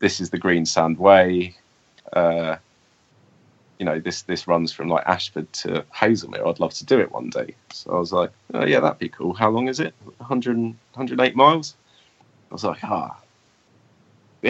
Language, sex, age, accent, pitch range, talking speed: English, male, 30-49, British, 80-100 Hz, 185 wpm